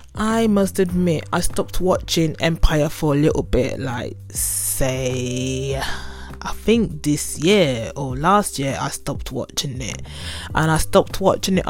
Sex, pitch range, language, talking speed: female, 130-175 Hz, English, 150 wpm